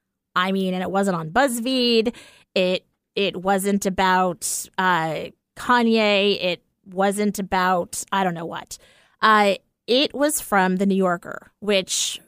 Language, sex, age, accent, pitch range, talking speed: English, female, 30-49, American, 180-215 Hz, 135 wpm